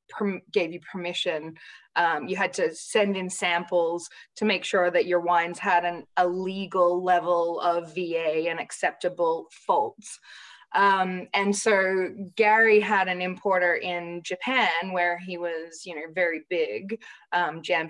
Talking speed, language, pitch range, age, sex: 150 wpm, English, 170-205 Hz, 20-39, female